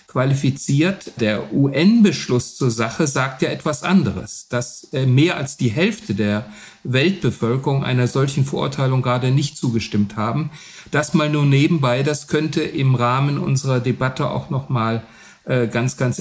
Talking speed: 135 wpm